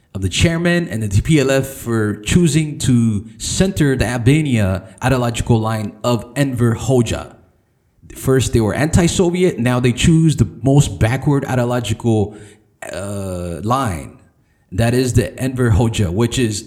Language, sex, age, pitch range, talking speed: English, male, 30-49, 105-135 Hz, 135 wpm